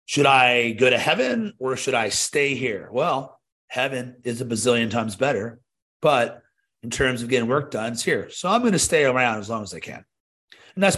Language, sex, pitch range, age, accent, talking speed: English, male, 115-140 Hz, 30-49, American, 210 wpm